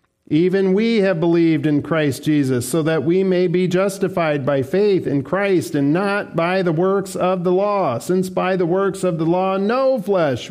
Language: English